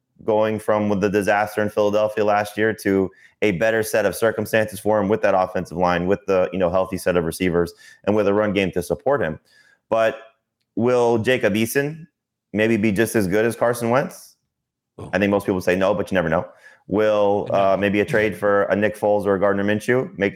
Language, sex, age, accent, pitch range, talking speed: English, male, 30-49, American, 95-110 Hz, 215 wpm